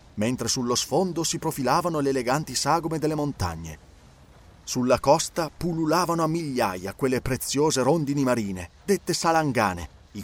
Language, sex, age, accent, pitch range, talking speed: Italian, male, 30-49, native, 100-165 Hz, 130 wpm